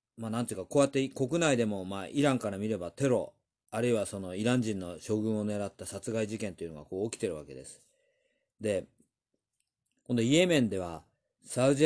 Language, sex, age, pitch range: Japanese, male, 40-59, 100-130 Hz